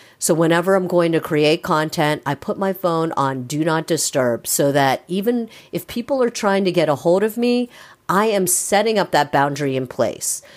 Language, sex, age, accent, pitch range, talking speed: English, female, 50-69, American, 135-175 Hz, 205 wpm